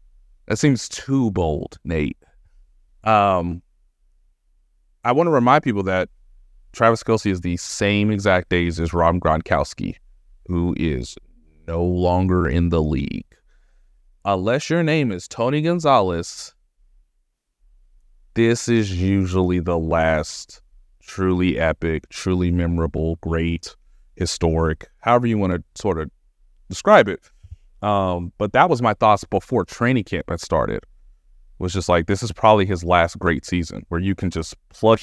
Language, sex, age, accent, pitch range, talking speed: English, male, 30-49, American, 80-100 Hz, 135 wpm